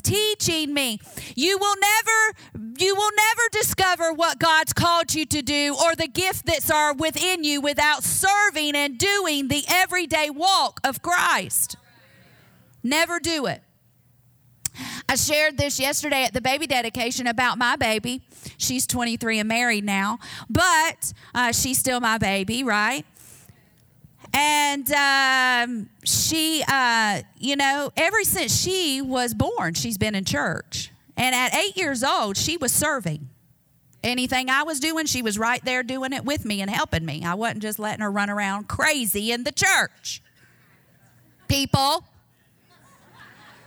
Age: 40-59